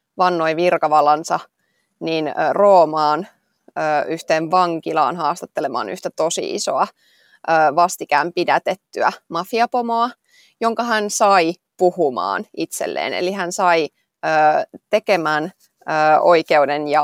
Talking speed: 80 wpm